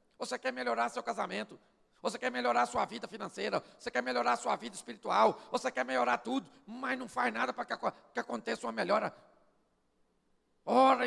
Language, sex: Portuguese, male